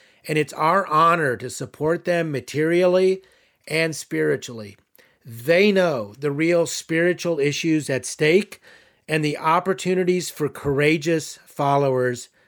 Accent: American